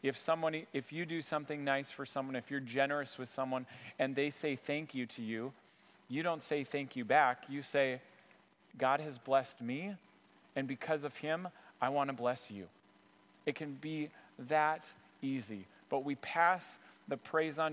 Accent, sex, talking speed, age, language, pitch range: American, male, 180 wpm, 30-49, English, 130-160 Hz